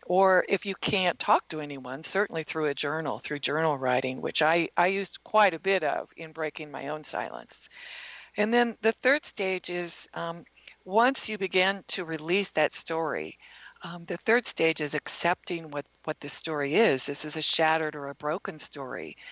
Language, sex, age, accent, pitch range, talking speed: English, female, 50-69, American, 150-185 Hz, 185 wpm